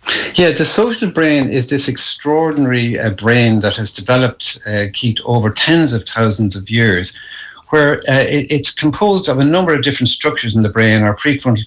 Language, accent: English, Irish